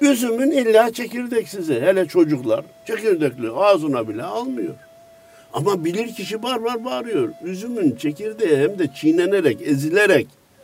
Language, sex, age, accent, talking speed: Turkish, male, 60-79, native, 120 wpm